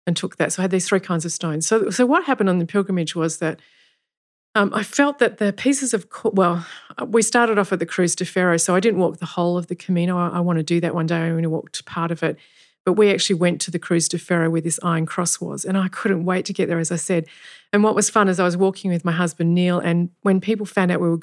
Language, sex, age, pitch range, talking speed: English, female, 40-59, 170-195 Hz, 290 wpm